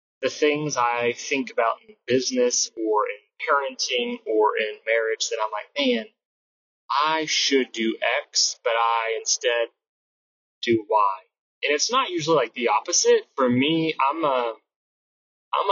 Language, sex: English, male